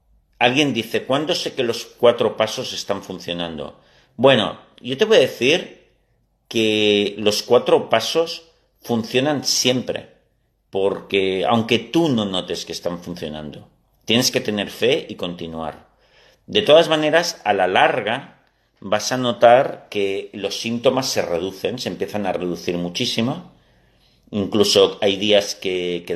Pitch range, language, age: 90-120 Hz, Spanish, 40-59